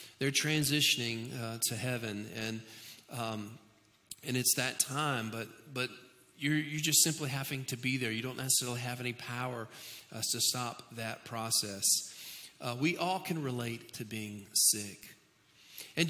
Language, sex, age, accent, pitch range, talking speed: English, male, 40-59, American, 120-170 Hz, 155 wpm